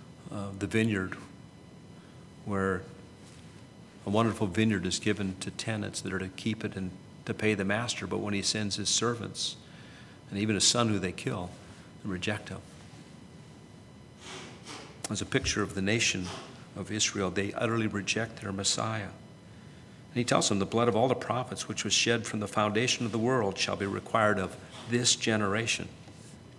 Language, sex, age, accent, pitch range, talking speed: English, male, 50-69, American, 100-115 Hz, 170 wpm